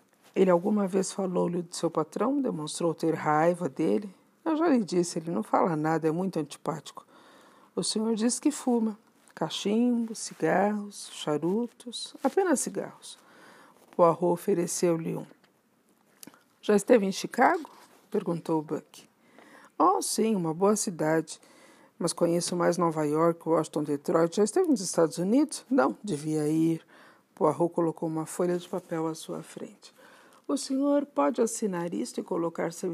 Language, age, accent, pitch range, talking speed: Portuguese, 50-69, Brazilian, 165-225 Hz, 140 wpm